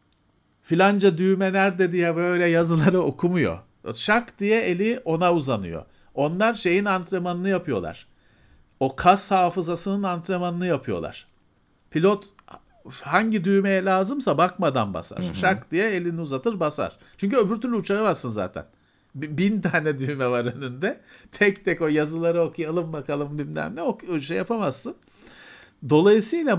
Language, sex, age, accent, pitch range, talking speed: Turkish, male, 50-69, native, 140-195 Hz, 120 wpm